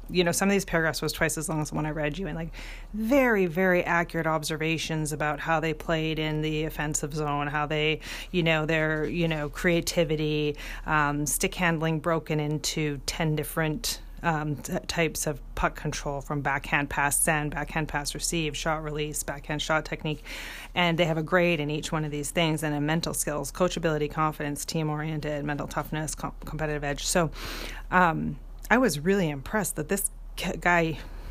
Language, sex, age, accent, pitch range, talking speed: English, female, 30-49, American, 150-175 Hz, 185 wpm